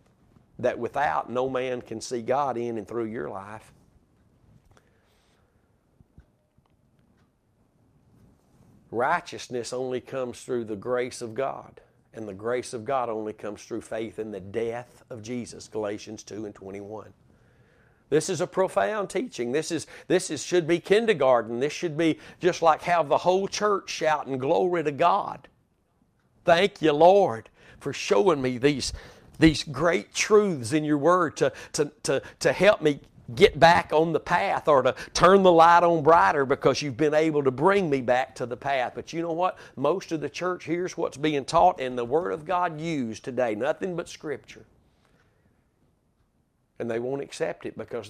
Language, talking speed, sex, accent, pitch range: English, 165 wpm, male, American, 120-165 Hz